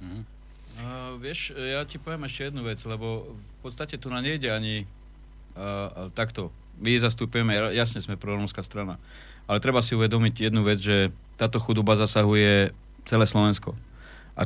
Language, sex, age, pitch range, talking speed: Slovak, male, 40-59, 110-140 Hz, 150 wpm